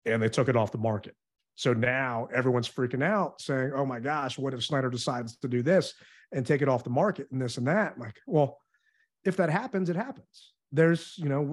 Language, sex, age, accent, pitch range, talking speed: English, male, 30-49, American, 130-170 Hz, 225 wpm